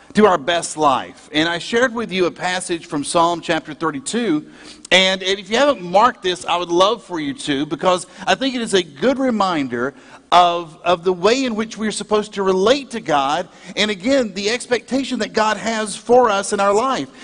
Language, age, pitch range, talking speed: English, 50-69, 195-250 Hz, 210 wpm